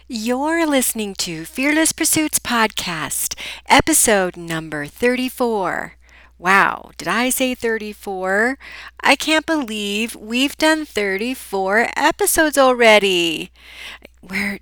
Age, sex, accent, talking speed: 40-59, female, American, 95 wpm